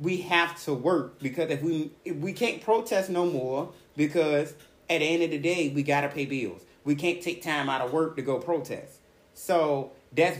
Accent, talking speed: American, 210 wpm